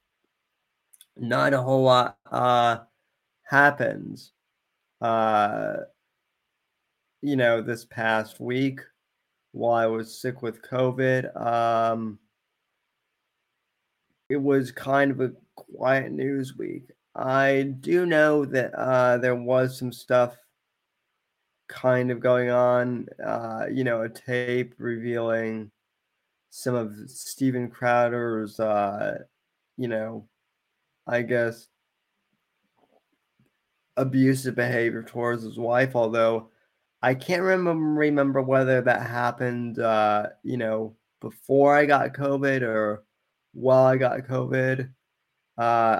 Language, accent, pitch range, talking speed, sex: English, American, 115-130 Hz, 105 wpm, male